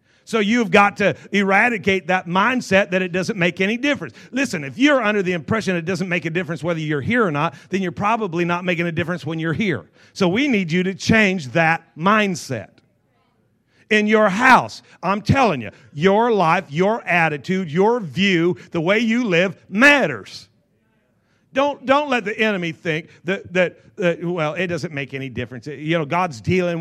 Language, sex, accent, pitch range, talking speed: English, male, American, 165-210 Hz, 185 wpm